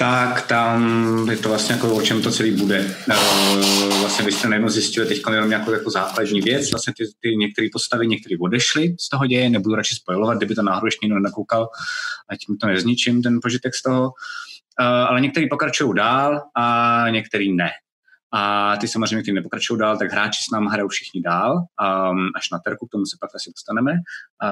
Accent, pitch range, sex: native, 105-125 Hz, male